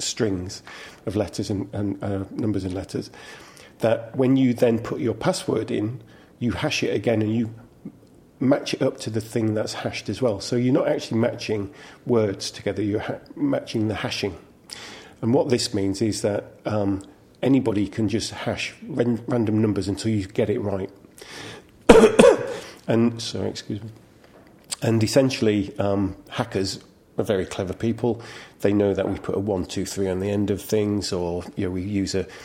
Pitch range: 100-115 Hz